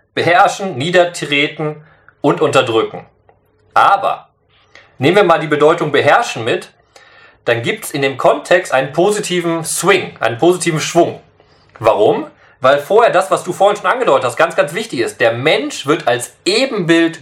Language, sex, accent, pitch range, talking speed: German, male, German, 135-175 Hz, 150 wpm